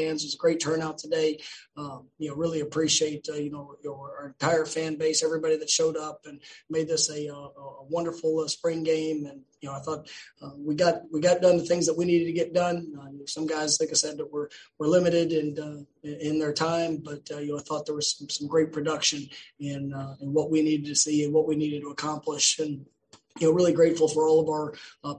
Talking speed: 245 wpm